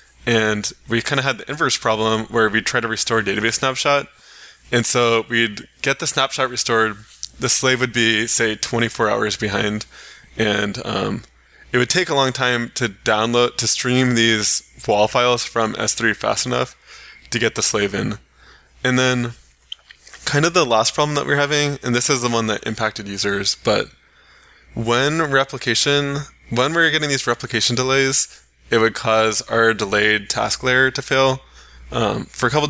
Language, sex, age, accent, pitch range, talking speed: English, male, 20-39, American, 110-130 Hz, 175 wpm